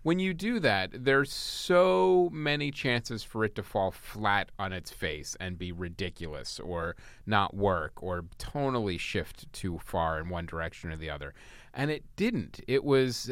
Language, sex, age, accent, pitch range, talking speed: English, male, 30-49, American, 90-115 Hz, 170 wpm